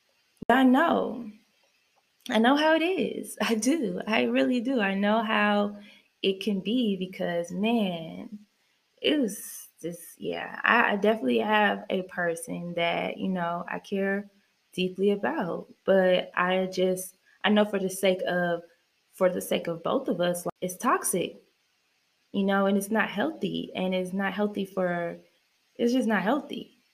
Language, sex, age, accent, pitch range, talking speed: English, female, 20-39, American, 170-225 Hz, 155 wpm